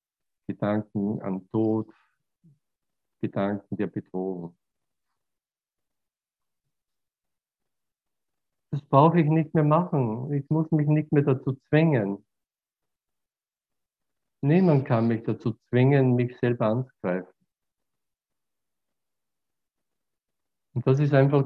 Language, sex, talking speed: German, male, 85 wpm